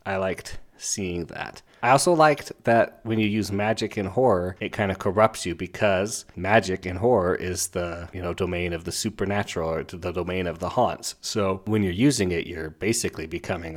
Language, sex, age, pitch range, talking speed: English, male, 30-49, 90-105 Hz, 200 wpm